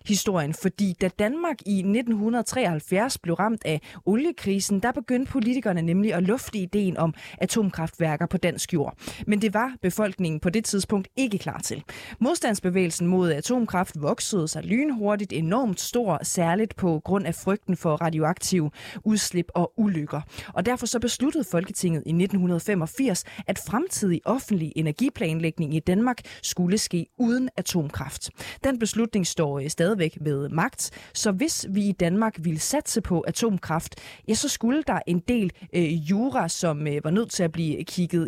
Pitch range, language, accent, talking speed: 165-220 Hz, Danish, native, 155 wpm